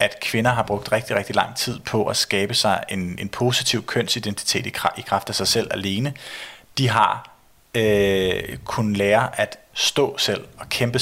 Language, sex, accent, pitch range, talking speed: Danish, male, native, 100-120 Hz, 180 wpm